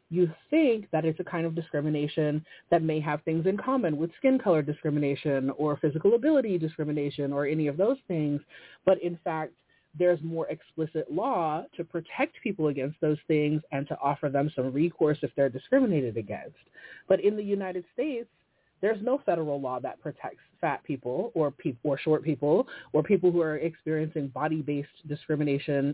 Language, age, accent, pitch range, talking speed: English, 30-49, American, 150-185 Hz, 170 wpm